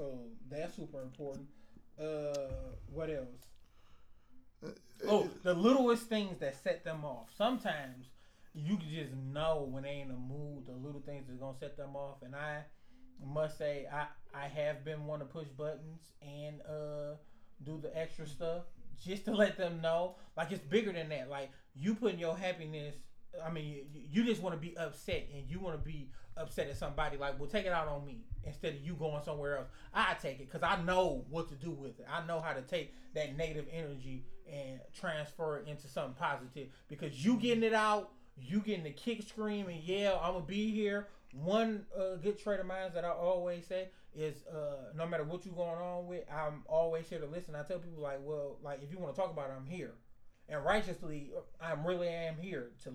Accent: American